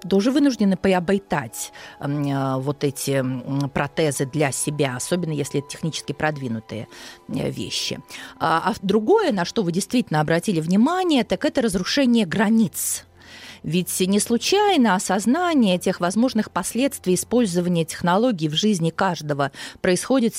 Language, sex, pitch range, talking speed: Russian, female, 165-230 Hz, 115 wpm